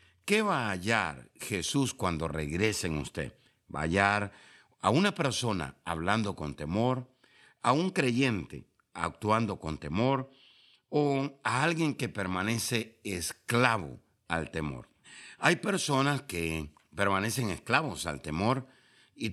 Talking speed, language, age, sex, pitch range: 125 wpm, Spanish, 60-79, male, 85-135 Hz